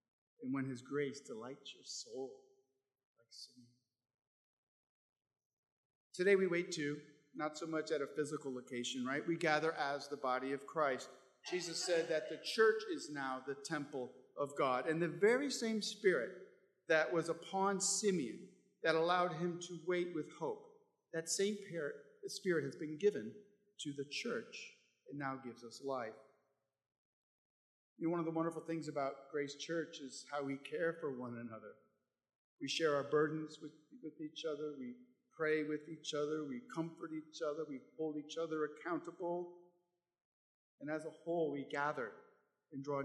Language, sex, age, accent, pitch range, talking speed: English, male, 50-69, American, 140-175 Hz, 160 wpm